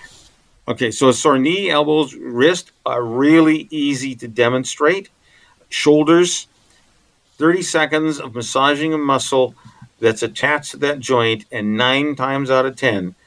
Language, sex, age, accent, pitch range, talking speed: English, male, 50-69, American, 110-140 Hz, 135 wpm